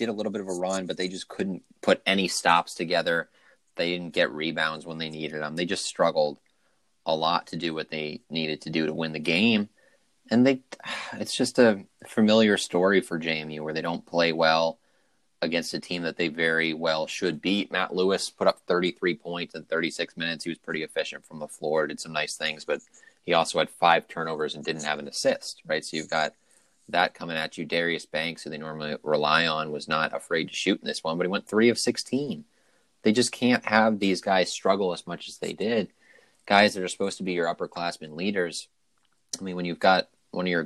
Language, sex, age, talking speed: English, male, 30-49, 225 wpm